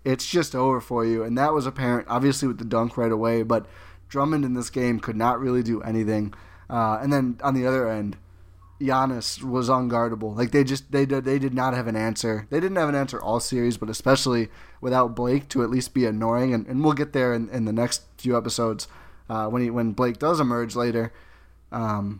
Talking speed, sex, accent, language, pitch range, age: 215 wpm, male, American, English, 110-130 Hz, 20-39